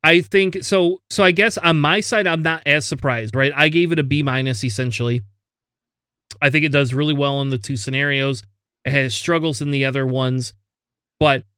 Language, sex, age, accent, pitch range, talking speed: English, male, 30-49, American, 125-160 Hz, 200 wpm